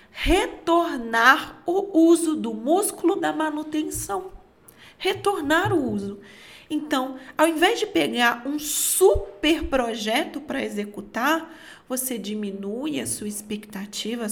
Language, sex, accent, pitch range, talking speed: Portuguese, female, Brazilian, 210-310 Hz, 105 wpm